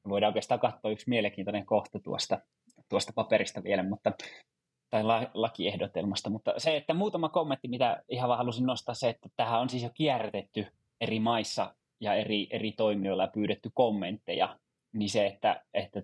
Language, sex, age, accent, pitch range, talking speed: Finnish, male, 20-39, native, 105-125 Hz, 165 wpm